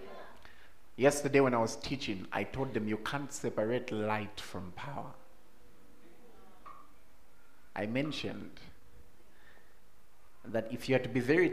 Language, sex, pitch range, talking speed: English, male, 105-140 Hz, 120 wpm